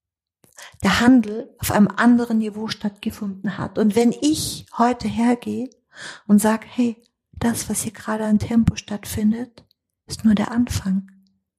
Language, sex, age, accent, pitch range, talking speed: German, female, 50-69, German, 185-225 Hz, 140 wpm